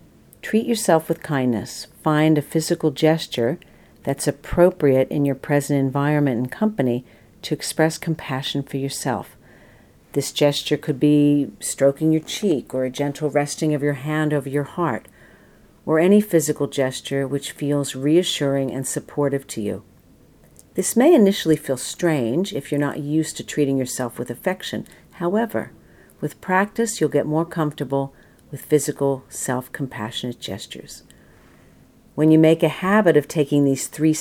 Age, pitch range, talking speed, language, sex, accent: 50-69, 135-160 Hz, 145 wpm, English, female, American